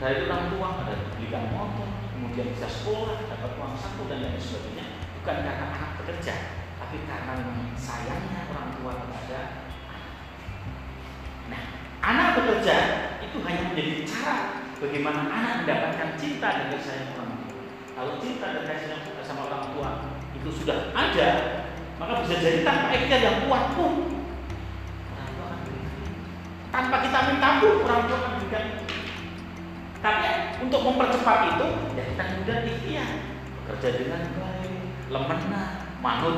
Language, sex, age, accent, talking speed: Indonesian, male, 40-59, native, 135 wpm